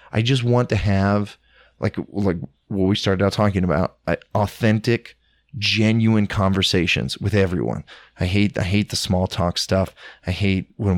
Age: 20-39